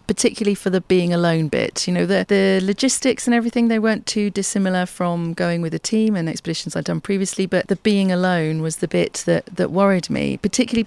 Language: English